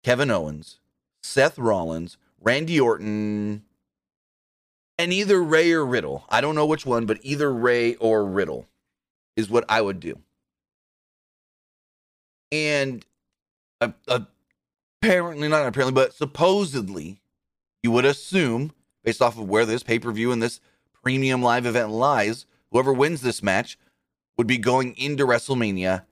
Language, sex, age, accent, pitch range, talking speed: English, male, 30-49, American, 105-140 Hz, 130 wpm